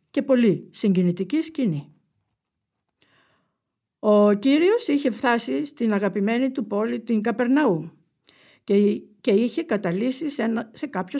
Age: 50-69